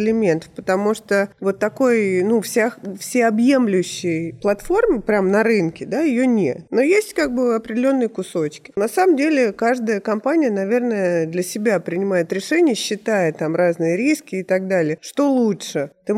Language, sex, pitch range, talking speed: Russian, female, 180-245 Hz, 150 wpm